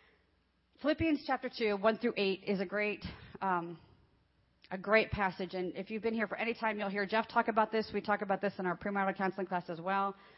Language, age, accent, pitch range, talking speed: English, 40-59, American, 175-210 Hz, 210 wpm